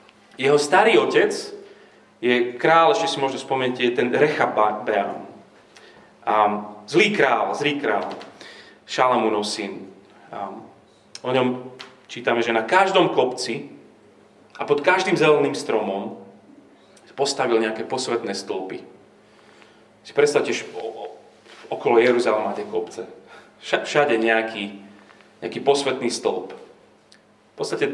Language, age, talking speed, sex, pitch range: Slovak, 30-49, 100 wpm, male, 110-165 Hz